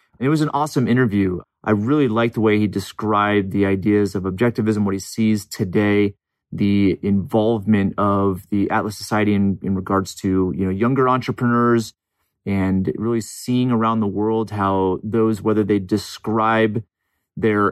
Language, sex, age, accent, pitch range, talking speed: English, male, 30-49, American, 95-110 Hz, 155 wpm